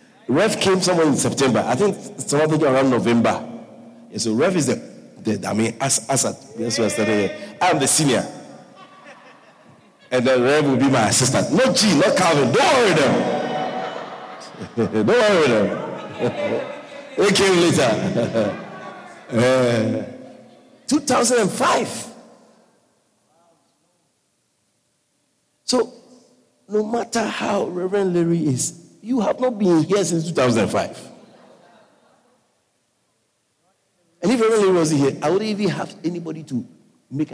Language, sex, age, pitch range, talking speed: English, male, 50-69, 120-190 Hz, 120 wpm